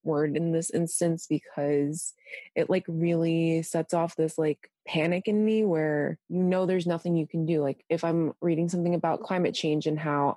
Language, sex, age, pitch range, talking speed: English, female, 20-39, 160-185 Hz, 190 wpm